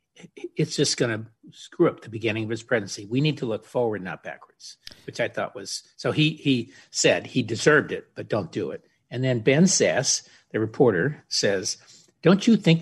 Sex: male